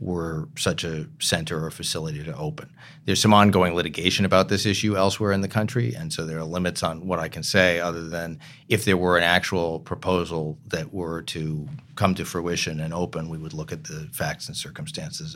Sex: male